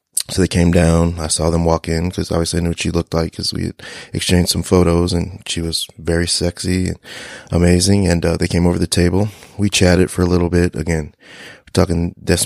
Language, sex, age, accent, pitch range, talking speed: English, male, 30-49, American, 85-95 Hz, 215 wpm